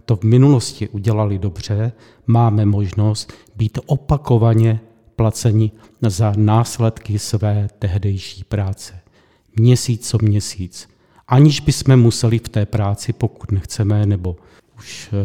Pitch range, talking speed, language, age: 105-125 Hz, 110 wpm, Czech, 40-59